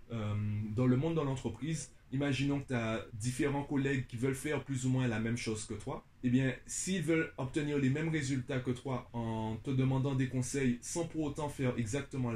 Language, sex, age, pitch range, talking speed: French, male, 20-39, 120-150 Hz, 210 wpm